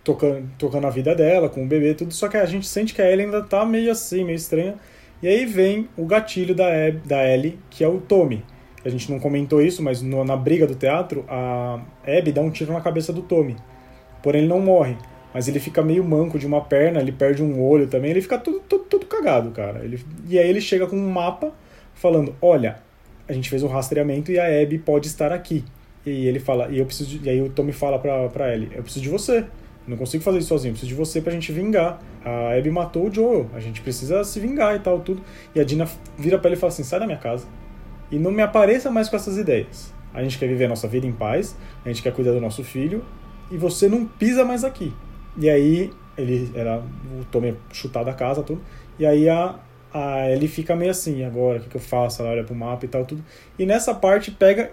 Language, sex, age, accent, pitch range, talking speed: Portuguese, male, 20-39, Brazilian, 130-185 Hz, 240 wpm